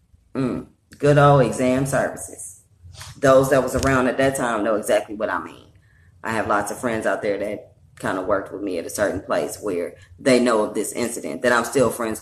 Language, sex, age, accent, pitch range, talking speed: English, female, 20-39, American, 110-140 Hz, 215 wpm